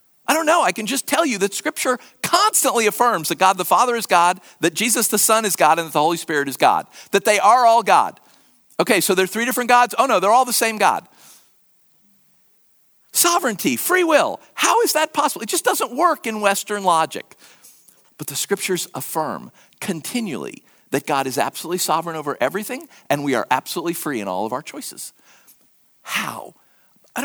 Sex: male